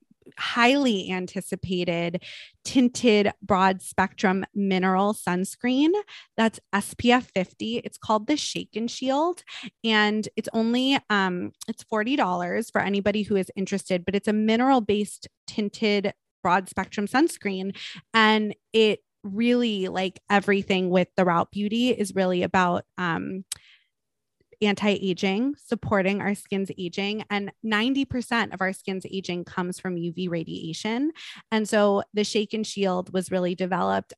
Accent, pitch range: American, 185-225 Hz